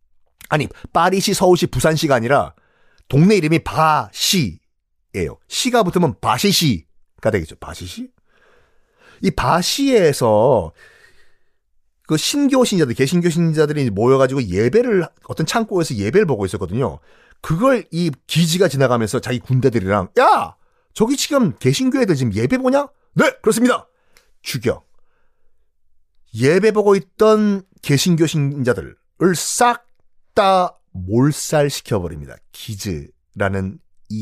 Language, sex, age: Korean, male, 40-59